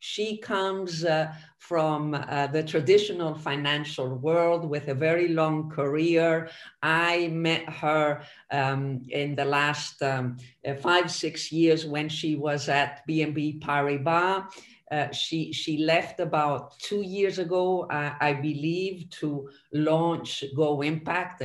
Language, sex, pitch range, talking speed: English, female, 145-170 Hz, 130 wpm